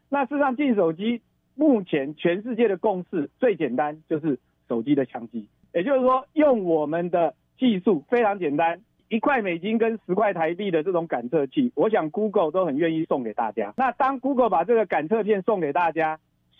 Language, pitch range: Chinese, 155-225 Hz